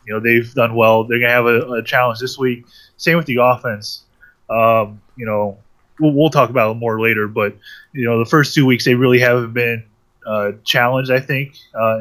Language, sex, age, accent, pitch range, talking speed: English, male, 20-39, American, 110-130 Hz, 220 wpm